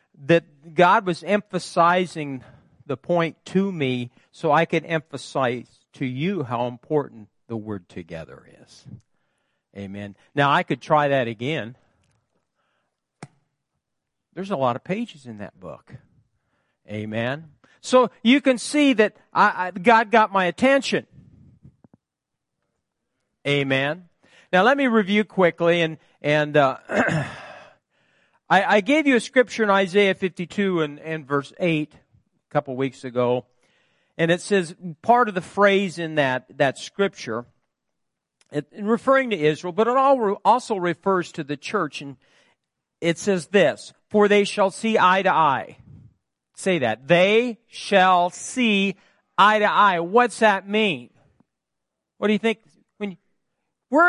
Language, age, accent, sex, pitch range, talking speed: English, 50-69, American, male, 145-210 Hz, 140 wpm